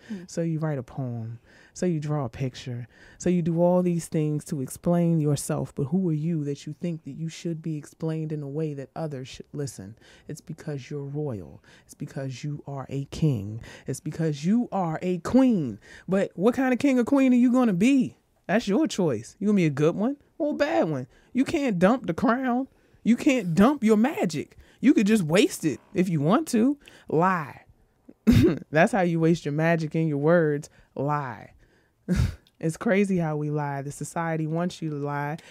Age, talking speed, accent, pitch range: 20-39, 205 wpm, American, 145-185 Hz